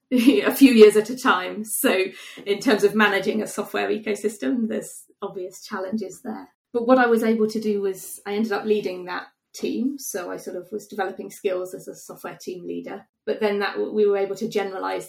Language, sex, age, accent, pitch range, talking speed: English, female, 30-49, British, 190-220 Hz, 205 wpm